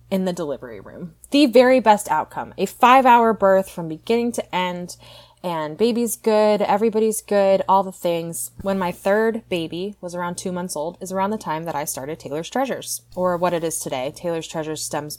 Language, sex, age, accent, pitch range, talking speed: English, female, 20-39, American, 150-200 Hz, 200 wpm